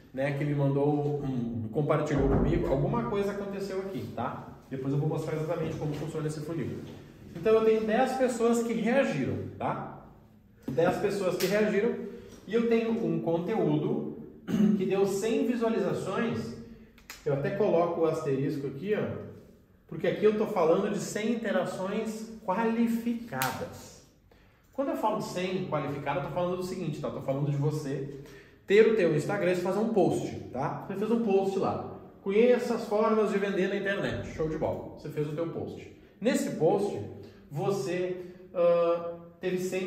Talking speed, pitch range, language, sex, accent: 160 wpm, 145-220 Hz, Portuguese, male, Brazilian